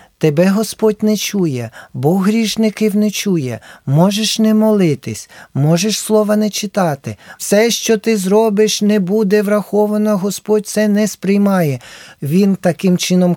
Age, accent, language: 40-59, native, Ukrainian